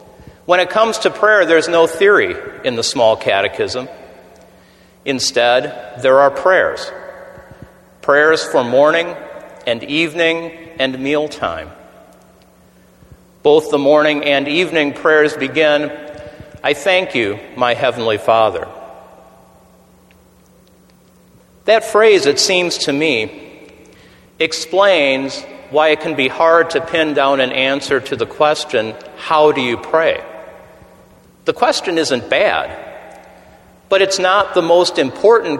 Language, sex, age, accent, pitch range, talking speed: English, male, 50-69, American, 140-185 Hz, 120 wpm